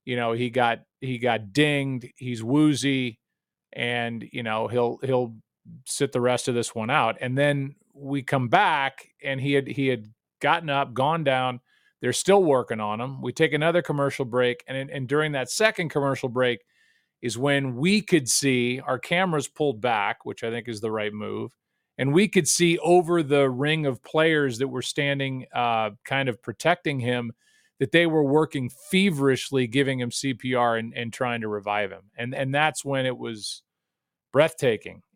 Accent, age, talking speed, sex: American, 40-59, 180 wpm, male